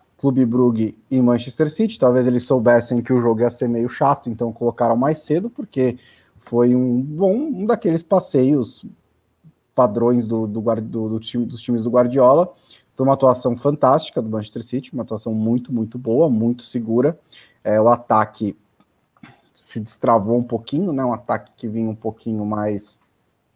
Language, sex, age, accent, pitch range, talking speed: Portuguese, male, 20-39, Brazilian, 115-130 Hz, 165 wpm